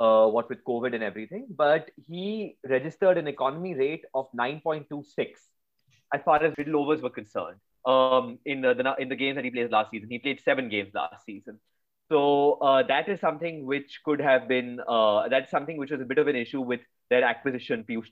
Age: 30-49